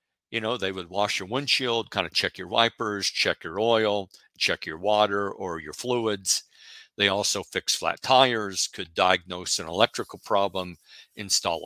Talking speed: 165 wpm